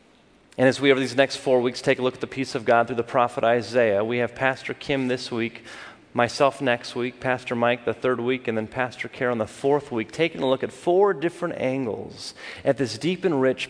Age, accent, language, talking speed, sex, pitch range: 30-49, American, English, 230 wpm, male, 125-150 Hz